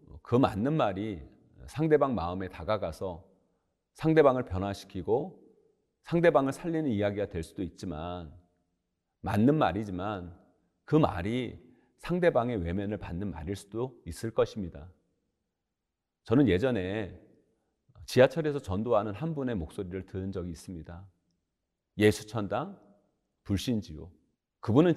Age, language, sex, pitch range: 40-59, Korean, male, 90-125 Hz